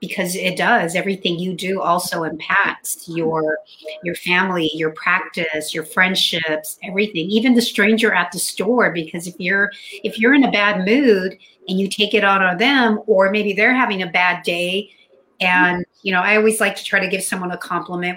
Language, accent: English, American